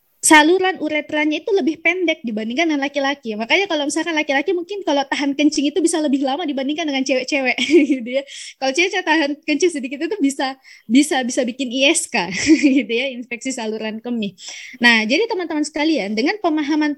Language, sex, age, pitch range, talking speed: Indonesian, female, 20-39, 255-320 Hz, 165 wpm